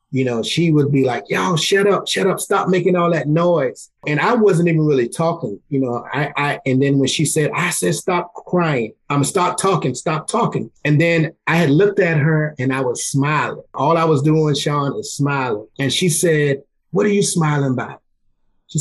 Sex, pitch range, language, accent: male, 140-185 Hz, English, American